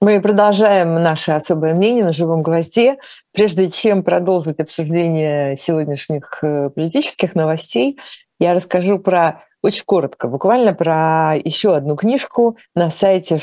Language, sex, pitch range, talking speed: Russian, female, 150-180 Hz, 120 wpm